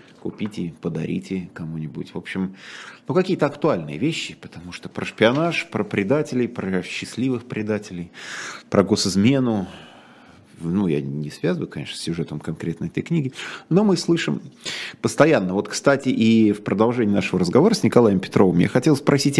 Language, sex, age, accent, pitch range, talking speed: Russian, male, 30-49, native, 90-120 Hz, 145 wpm